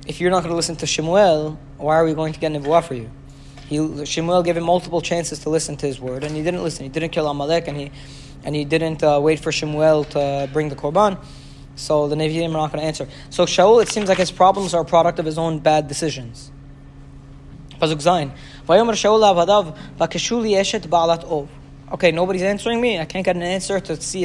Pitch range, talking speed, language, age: 140-175 Hz, 205 wpm, English, 20-39